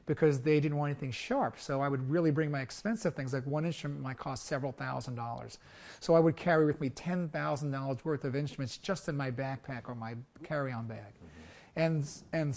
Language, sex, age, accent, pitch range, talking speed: English, male, 40-59, American, 140-170 Hz, 200 wpm